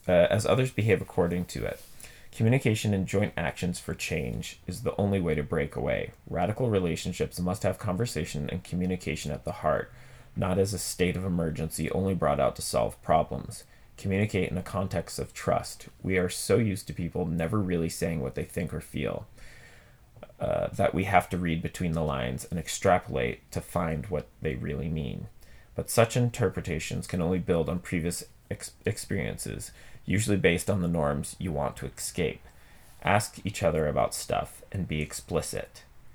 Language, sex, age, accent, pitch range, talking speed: English, male, 30-49, American, 80-100 Hz, 175 wpm